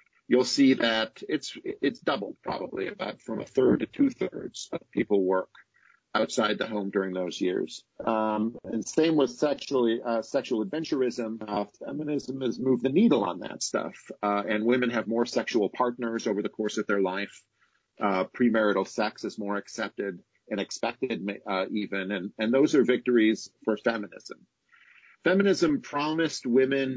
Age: 50-69